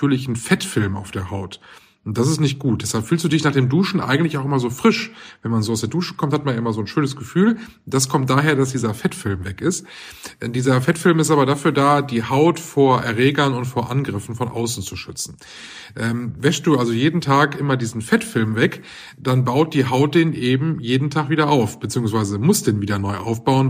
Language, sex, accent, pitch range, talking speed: German, male, German, 115-150 Hz, 230 wpm